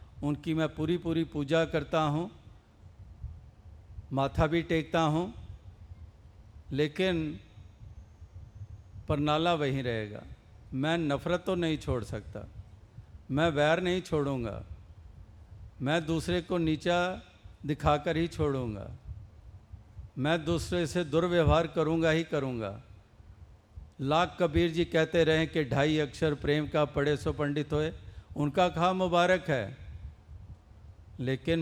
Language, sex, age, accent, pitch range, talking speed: Hindi, male, 50-69, native, 100-155 Hz, 110 wpm